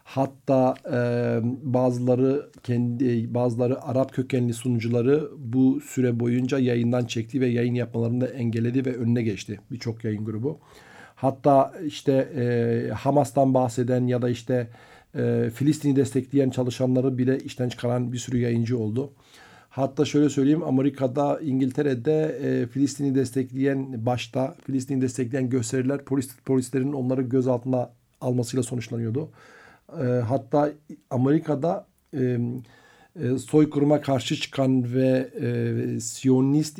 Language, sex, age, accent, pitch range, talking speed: Turkish, male, 50-69, native, 120-140 Hz, 110 wpm